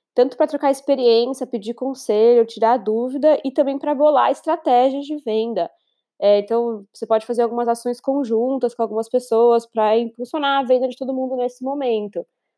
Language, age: English, 20-39